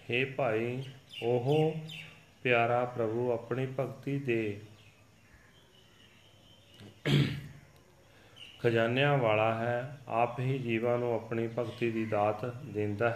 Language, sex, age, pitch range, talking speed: Punjabi, male, 40-59, 110-125 Hz, 80 wpm